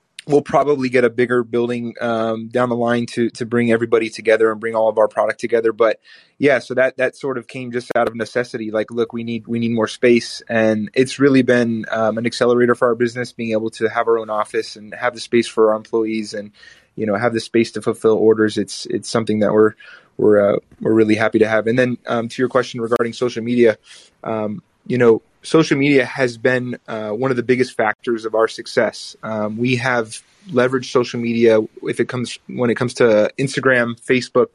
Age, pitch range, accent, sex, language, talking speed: 20-39, 110-125 Hz, American, male, English, 220 wpm